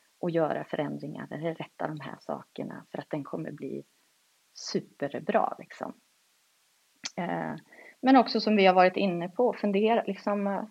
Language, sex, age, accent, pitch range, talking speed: Swedish, female, 30-49, native, 170-235 Hz, 140 wpm